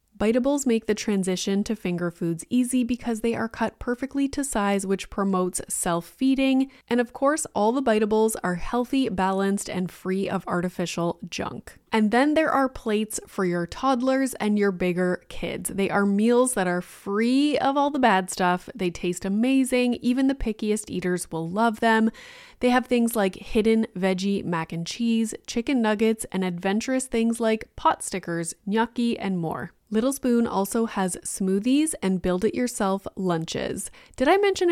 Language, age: English, 20-39